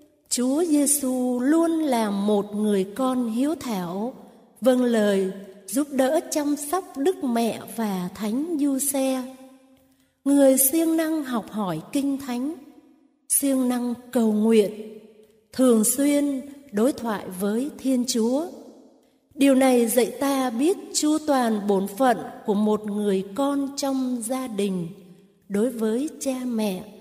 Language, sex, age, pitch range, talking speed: Vietnamese, female, 30-49, 220-290 Hz, 130 wpm